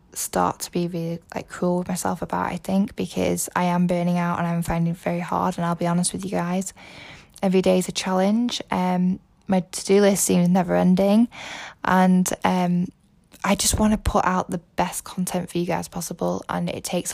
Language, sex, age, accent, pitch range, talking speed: English, female, 10-29, British, 170-190 Hz, 205 wpm